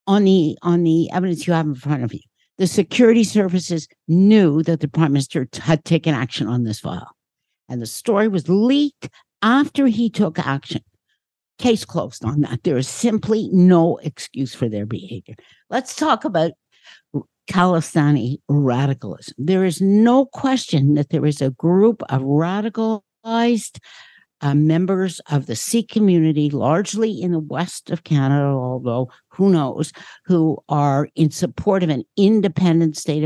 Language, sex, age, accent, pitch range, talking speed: English, female, 60-79, American, 145-205 Hz, 155 wpm